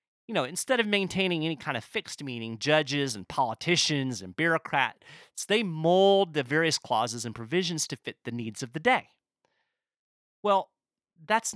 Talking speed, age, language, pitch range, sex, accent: 160 wpm, 30-49, English, 120-195 Hz, male, American